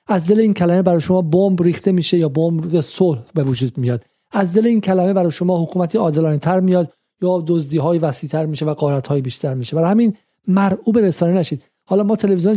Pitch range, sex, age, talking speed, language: 160-200 Hz, male, 50-69, 210 wpm, Persian